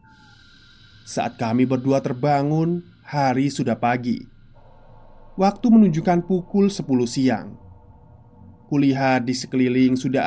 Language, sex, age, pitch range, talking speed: Indonesian, male, 20-39, 115-155 Hz, 95 wpm